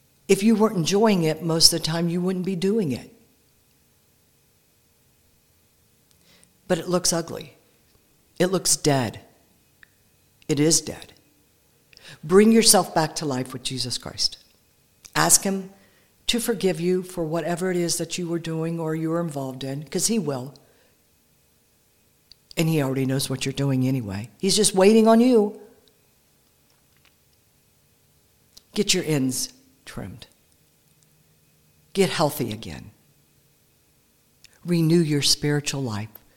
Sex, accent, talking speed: female, American, 125 wpm